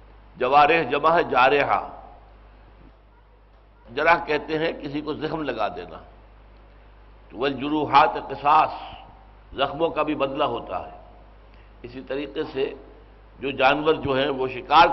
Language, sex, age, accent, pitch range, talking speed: English, male, 60-79, Indian, 110-155 Hz, 115 wpm